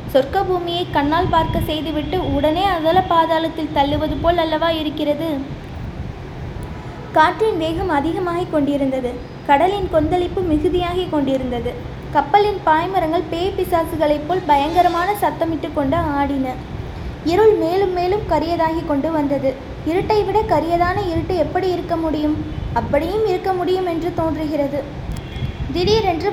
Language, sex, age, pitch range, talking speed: Tamil, female, 20-39, 300-365 Hz, 105 wpm